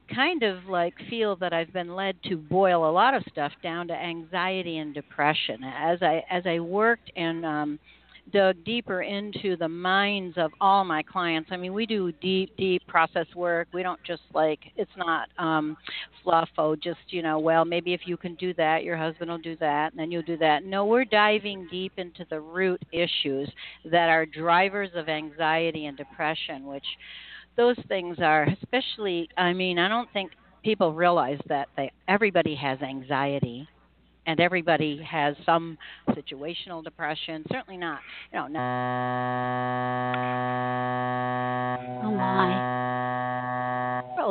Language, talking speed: English, 155 wpm